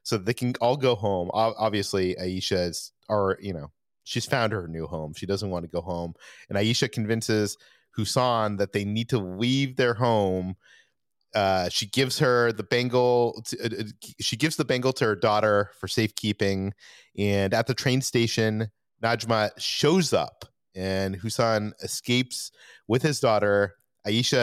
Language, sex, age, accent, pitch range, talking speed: English, male, 30-49, American, 100-125 Hz, 155 wpm